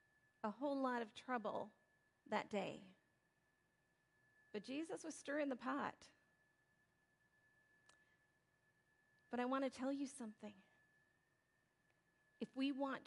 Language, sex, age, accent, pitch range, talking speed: English, female, 40-59, American, 255-325 Hz, 105 wpm